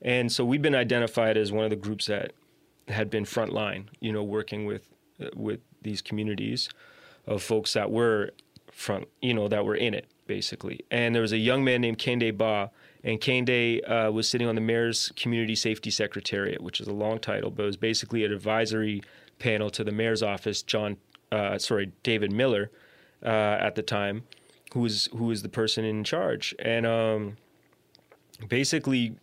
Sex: male